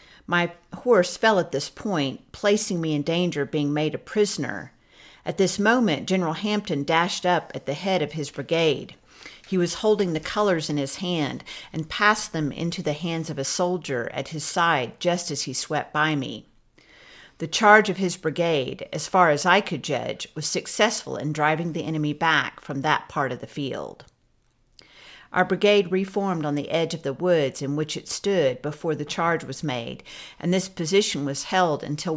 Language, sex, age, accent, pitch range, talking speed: English, female, 50-69, American, 150-185 Hz, 190 wpm